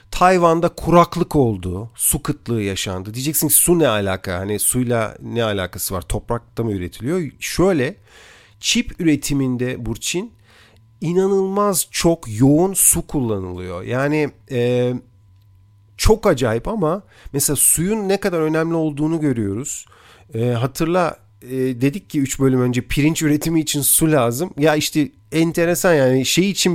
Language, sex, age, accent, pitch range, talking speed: Turkish, male, 40-59, native, 115-155 Hz, 125 wpm